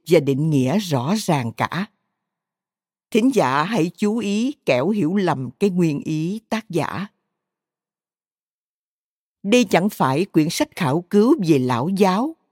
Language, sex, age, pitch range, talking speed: Vietnamese, female, 50-69, 155-220 Hz, 140 wpm